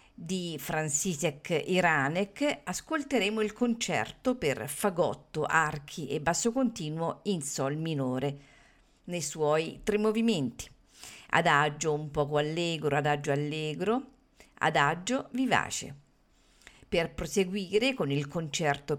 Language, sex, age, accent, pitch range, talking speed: Italian, female, 50-69, native, 150-210 Hz, 100 wpm